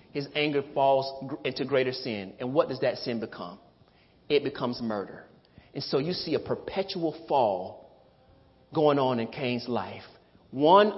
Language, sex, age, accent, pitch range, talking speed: English, male, 40-59, American, 150-210 Hz, 155 wpm